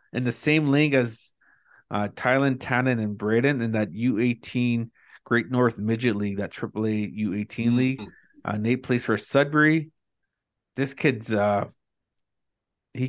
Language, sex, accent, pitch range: English, male, American, 105-130 Hz